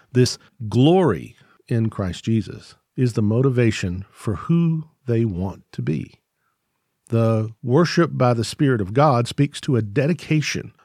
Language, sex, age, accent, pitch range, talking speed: English, male, 50-69, American, 105-135 Hz, 140 wpm